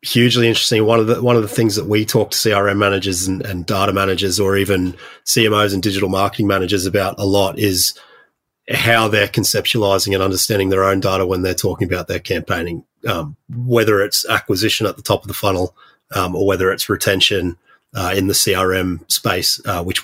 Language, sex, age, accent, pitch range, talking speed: English, male, 30-49, Australian, 100-120 Hz, 200 wpm